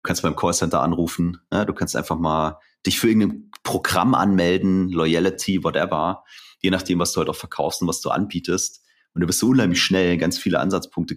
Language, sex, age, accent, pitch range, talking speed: German, male, 30-49, German, 85-105 Hz, 200 wpm